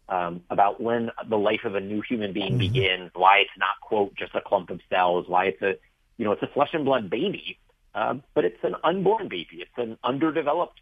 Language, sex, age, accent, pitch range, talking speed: English, male, 40-59, American, 95-140 Hz, 220 wpm